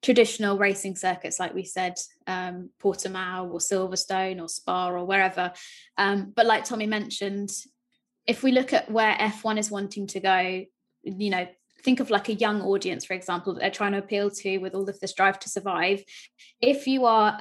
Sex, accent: female, British